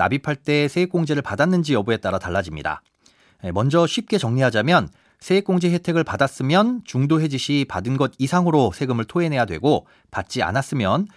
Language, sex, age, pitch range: Korean, male, 40-59, 115-175 Hz